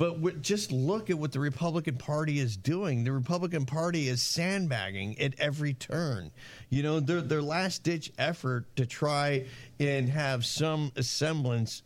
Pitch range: 125-155 Hz